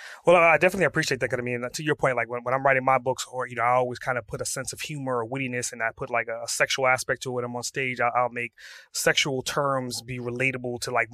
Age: 30-49